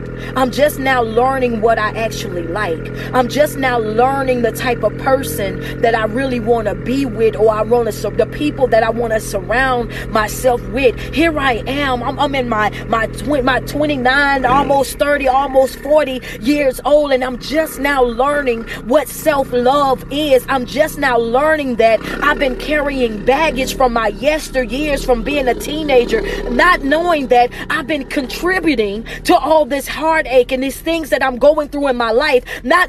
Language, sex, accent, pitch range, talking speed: English, female, American, 255-320 Hz, 180 wpm